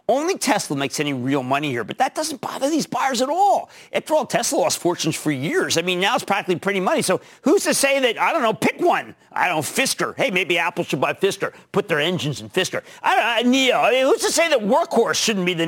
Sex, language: male, English